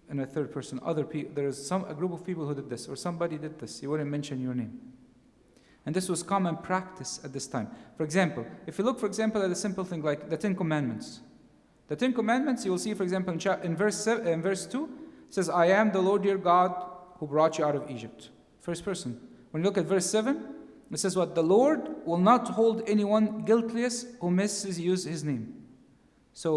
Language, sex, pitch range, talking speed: English, male, 145-205 Hz, 230 wpm